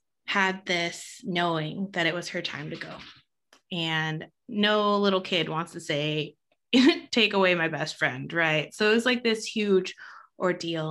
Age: 20-39